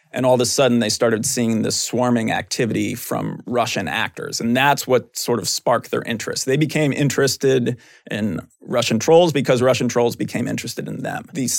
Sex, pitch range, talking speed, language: male, 115-145 Hz, 185 wpm, English